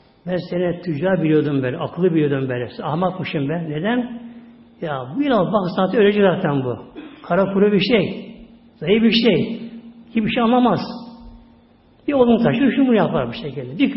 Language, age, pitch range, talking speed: Turkish, 60-79, 145-230 Hz, 165 wpm